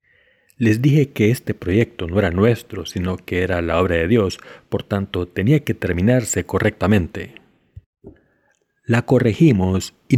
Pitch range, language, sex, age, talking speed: 90-115 Hz, Spanish, male, 40-59, 140 wpm